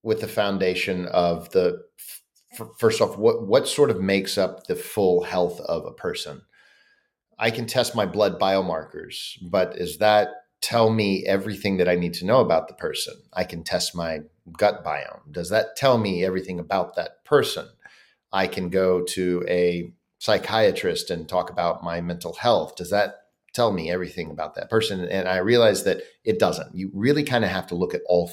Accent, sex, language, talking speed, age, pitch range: American, male, English, 185 wpm, 40-59, 90-150 Hz